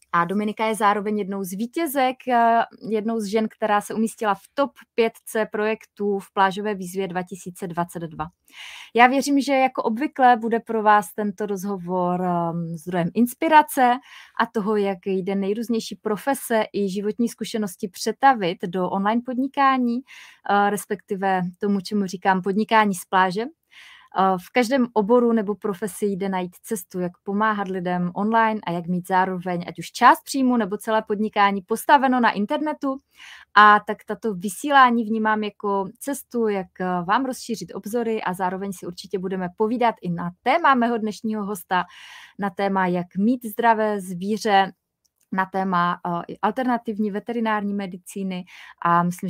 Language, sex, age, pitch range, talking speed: Czech, female, 20-39, 185-230 Hz, 140 wpm